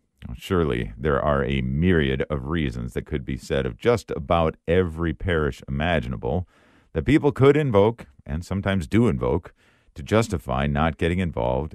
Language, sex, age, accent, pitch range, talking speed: English, male, 50-69, American, 70-100 Hz, 155 wpm